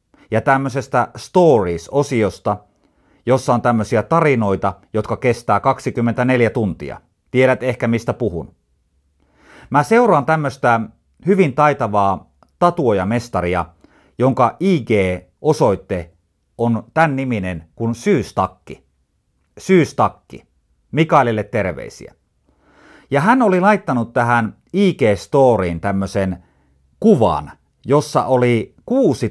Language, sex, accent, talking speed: Finnish, male, native, 85 wpm